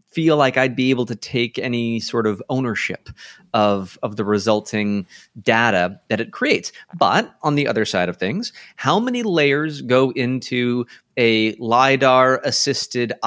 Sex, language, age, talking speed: male, English, 30-49, 150 wpm